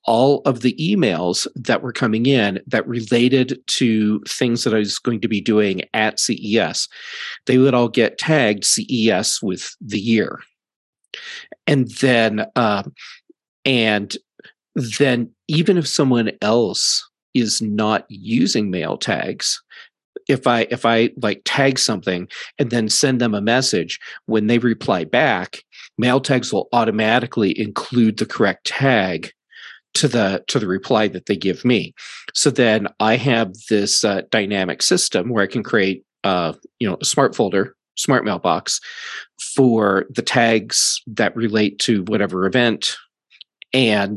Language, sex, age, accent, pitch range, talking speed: English, male, 40-59, American, 105-130 Hz, 145 wpm